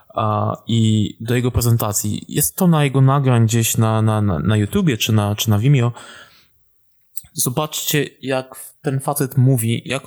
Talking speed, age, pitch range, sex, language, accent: 145 wpm, 20-39, 115-145 Hz, male, Polish, native